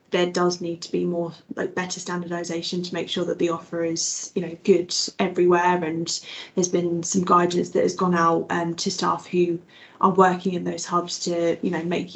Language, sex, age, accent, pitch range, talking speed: English, female, 10-29, British, 175-185 Hz, 205 wpm